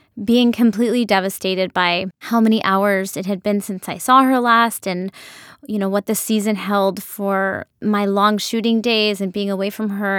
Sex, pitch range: female, 195-220 Hz